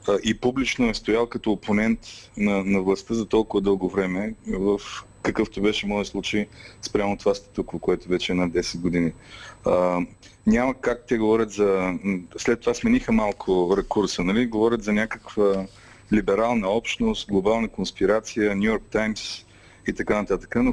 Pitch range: 100-125 Hz